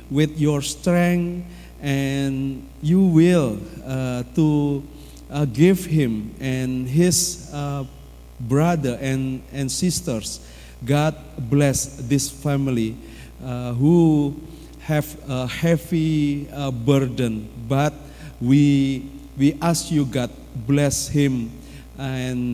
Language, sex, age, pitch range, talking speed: Indonesian, male, 50-69, 125-150 Hz, 100 wpm